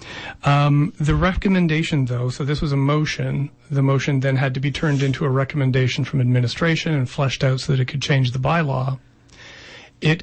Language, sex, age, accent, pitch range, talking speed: English, male, 40-59, American, 130-145 Hz, 190 wpm